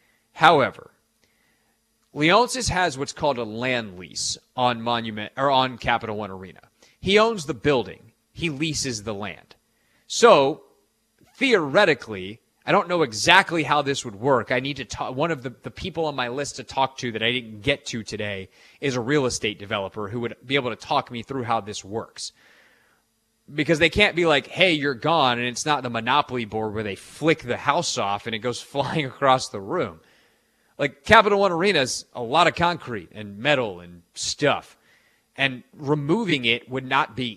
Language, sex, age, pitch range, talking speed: English, male, 30-49, 115-150 Hz, 185 wpm